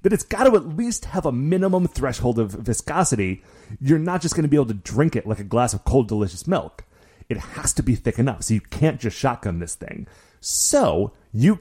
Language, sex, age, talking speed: English, male, 30-49, 225 wpm